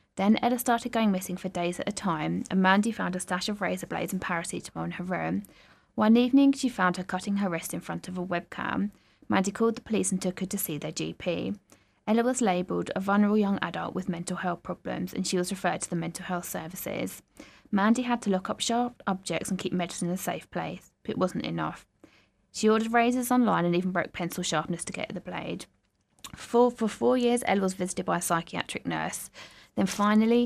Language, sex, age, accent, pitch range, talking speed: English, female, 20-39, British, 175-215 Hz, 220 wpm